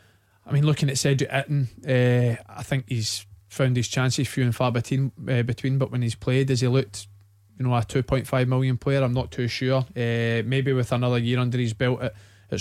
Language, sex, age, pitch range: English, male, 20-39, 110-130 Hz